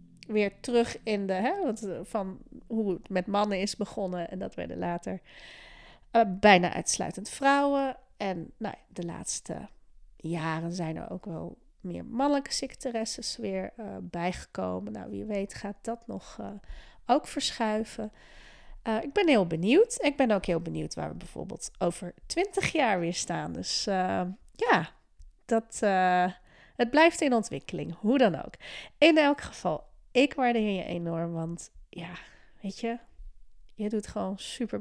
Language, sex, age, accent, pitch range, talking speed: Dutch, female, 30-49, Dutch, 175-235 Hz, 155 wpm